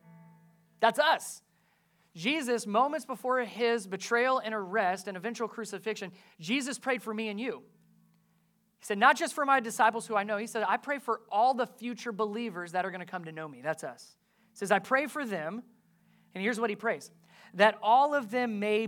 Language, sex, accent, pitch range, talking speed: English, male, American, 175-235 Hz, 200 wpm